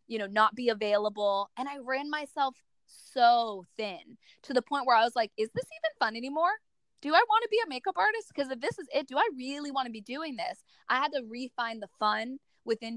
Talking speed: 235 wpm